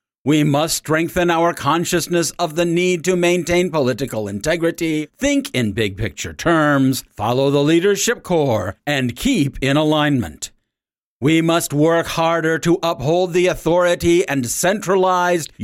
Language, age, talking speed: English, 50-69, 130 wpm